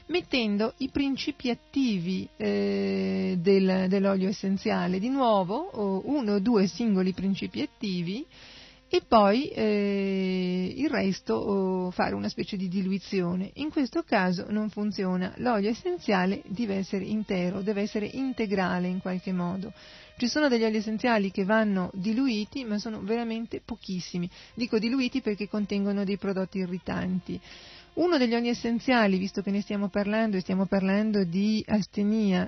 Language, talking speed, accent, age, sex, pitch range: Italian, 135 wpm, native, 40-59, female, 195-230 Hz